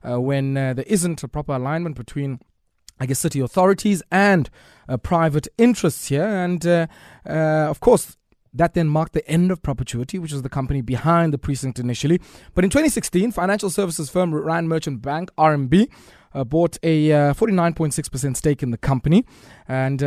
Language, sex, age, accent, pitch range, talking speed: English, male, 20-39, South African, 135-175 Hz, 170 wpm